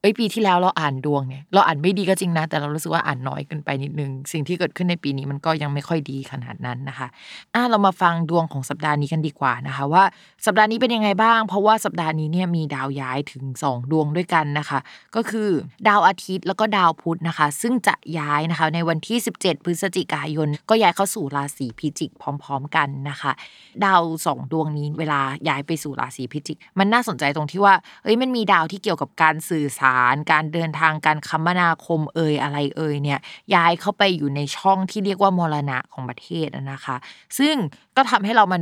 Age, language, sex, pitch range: 20-39, Thai, female, 150-195 Hz